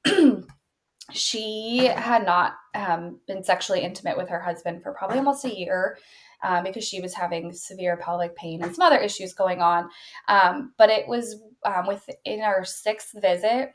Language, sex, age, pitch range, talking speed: English, female, 20-39, 185-250 Hz, 165 wpm